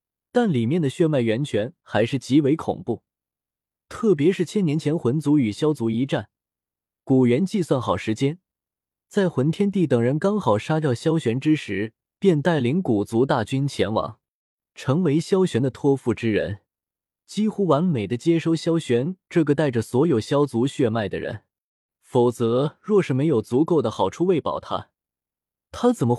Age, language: 20-39, Chinese